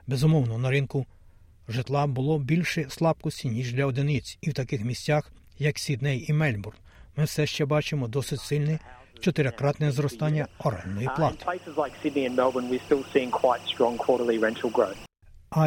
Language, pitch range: Ukrainian, 120-150 Hz